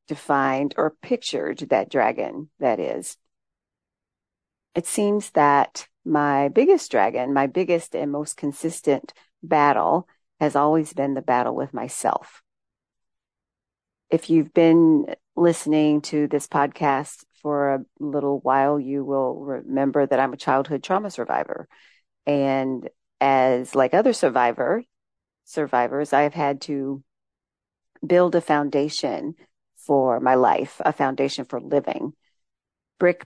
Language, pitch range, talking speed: English, 135-160 Hz, 120 wpm